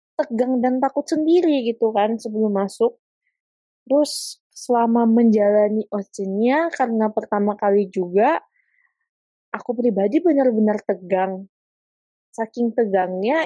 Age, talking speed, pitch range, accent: 20-39, 100 wpm, 195-250 Hz, native